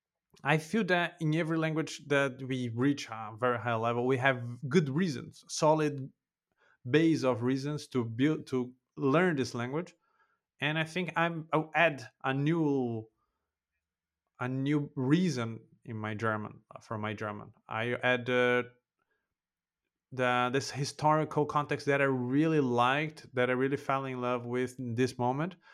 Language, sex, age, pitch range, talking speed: English, male, 30-49, 130-170 Hz, 150 wpm